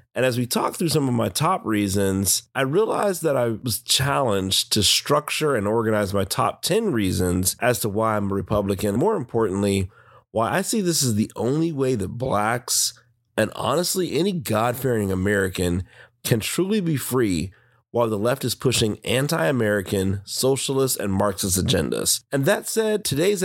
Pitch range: 105-135 Hz